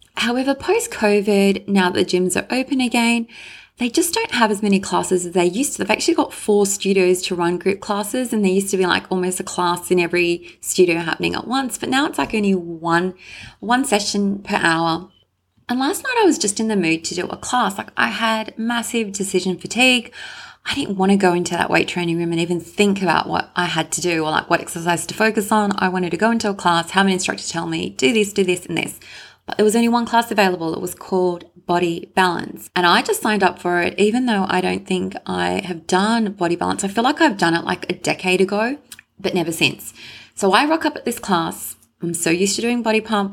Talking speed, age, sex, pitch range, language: 240 wpm, 20-39, female, 175-225 Hz, English